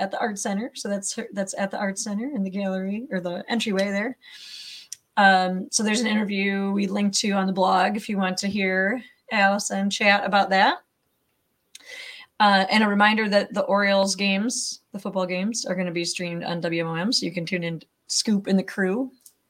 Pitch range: 190-235 Hz